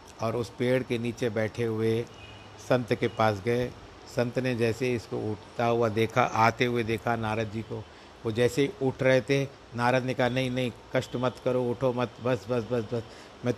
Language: Hindi